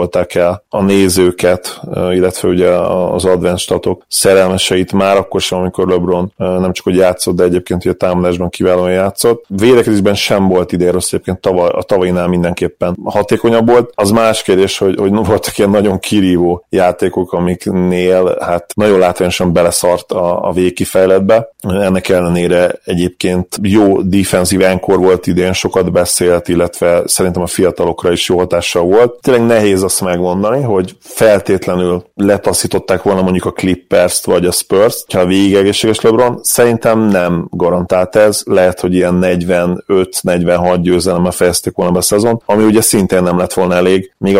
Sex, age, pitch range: male, 30-49, 90-100 Hz